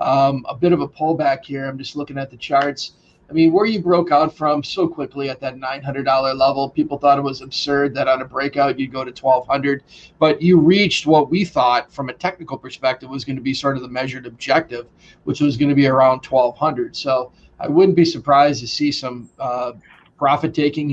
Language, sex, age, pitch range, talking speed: English, male, 40-59, 135-160 Hz, 215 wpm